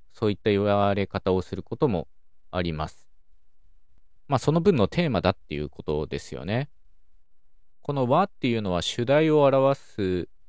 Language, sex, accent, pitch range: Japanese, male, native, 80-115 Hz